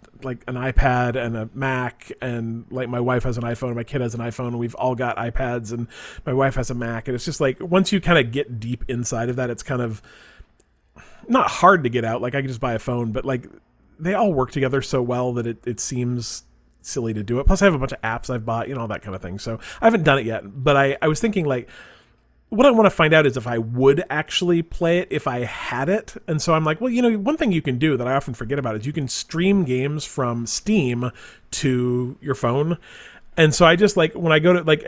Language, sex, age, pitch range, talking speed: English, male, 30-49, 120-155 Hz, 265 wpm